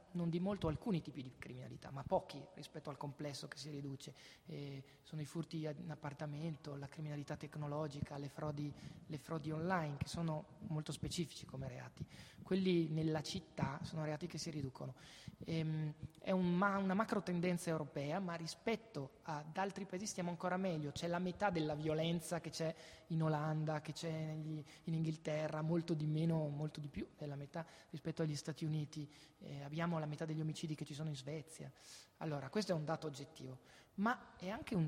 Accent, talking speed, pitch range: native, 185 wpm, 150-175 Hz